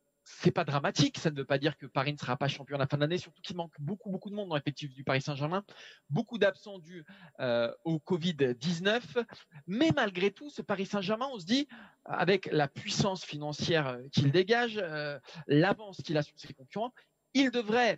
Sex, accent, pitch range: male, French, 145-200 Hz